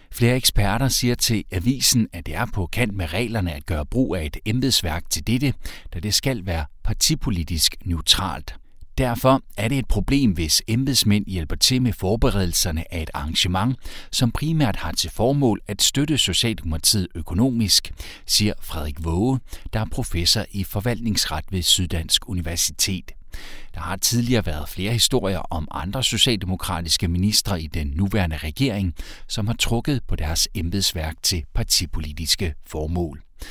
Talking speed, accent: 150 wpm, native